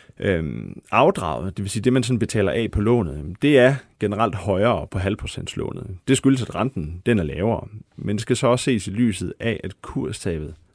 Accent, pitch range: native, 100-125 Hz